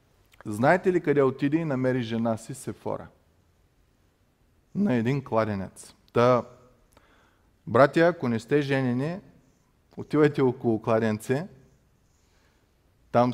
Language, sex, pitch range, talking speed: Bulgarian, male, 105-140 Hz, 100 wpm